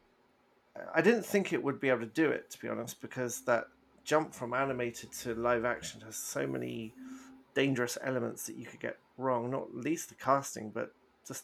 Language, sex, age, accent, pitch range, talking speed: English, male, 40-59, British, 120-140 Hz, 195 wpm